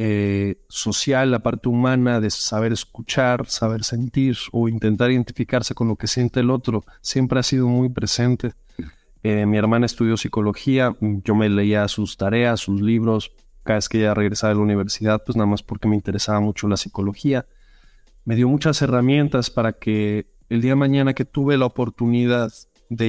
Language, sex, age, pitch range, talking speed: Spanish, male, 30-49, 105-130 Hz, 175 wpm